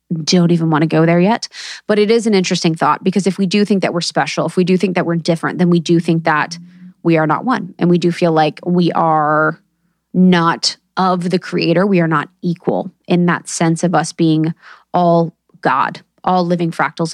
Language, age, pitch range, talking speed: English, 20-39, 165-205 Hz, 220 wpm